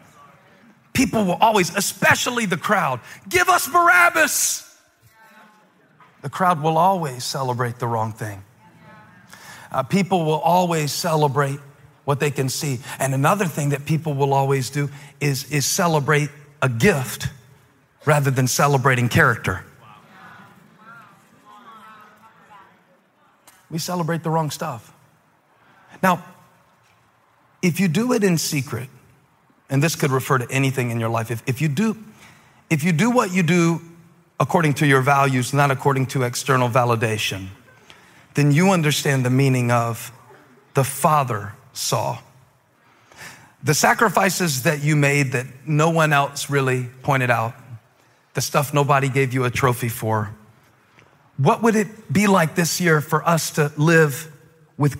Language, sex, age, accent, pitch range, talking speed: English, male, 40-59, American, 130-175 Hz, 135 wpm